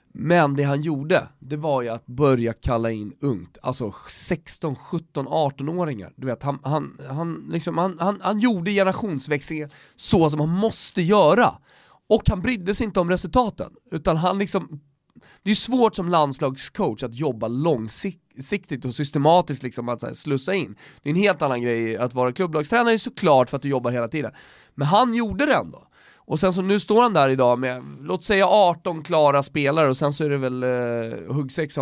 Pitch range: 135-190 Hz